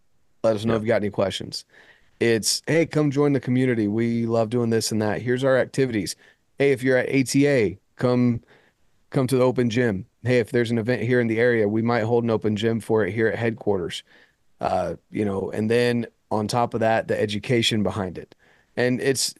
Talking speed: 215 wpm